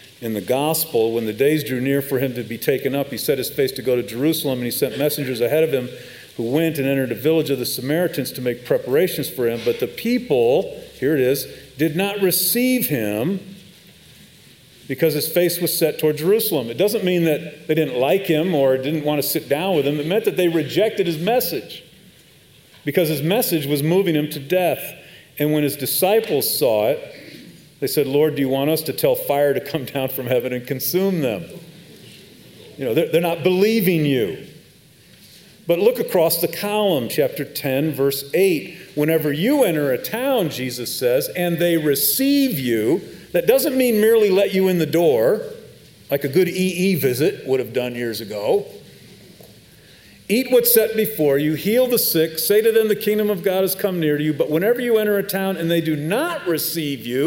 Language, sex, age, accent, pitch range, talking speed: English, male, 40-59, American, 140-195 Hz, 200 wpm